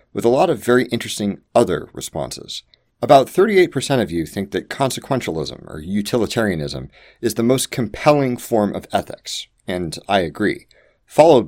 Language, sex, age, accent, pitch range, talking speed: English, male, 40-59, American, 90-125 Hz, 145 wpm